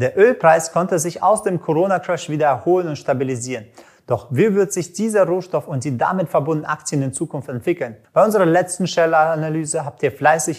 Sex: male